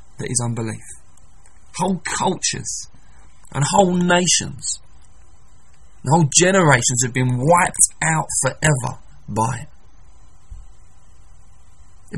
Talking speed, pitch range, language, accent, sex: 90 wpm, 105-160 Hz, English, British, male